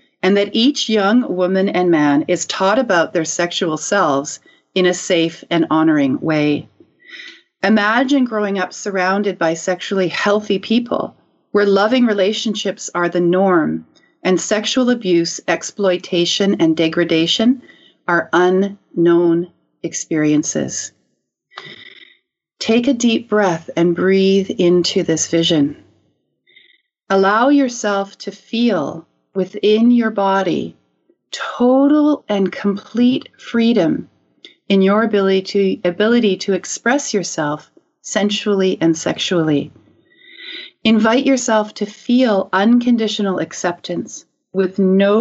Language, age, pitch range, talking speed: English, 40-59, 175-235 Hz, 110 wpm